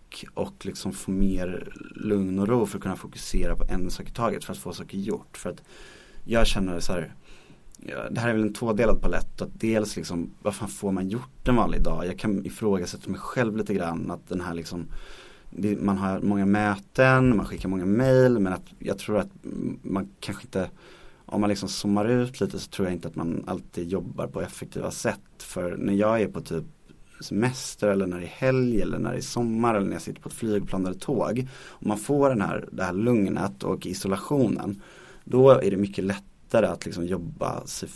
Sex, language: male, English